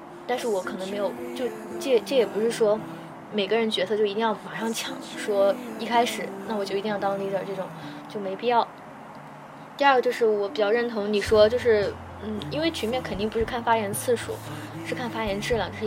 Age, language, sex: 20-39, Chinese, female